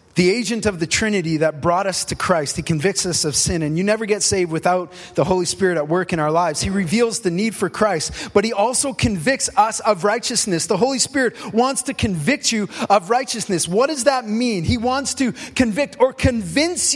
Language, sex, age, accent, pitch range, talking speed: English, male, 30-49, American, 210-295 Hz, 215 wpm